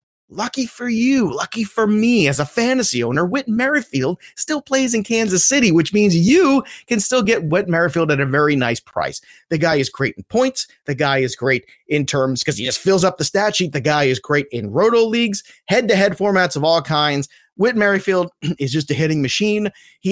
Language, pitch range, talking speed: English, 140-200 Hz, 215 wpm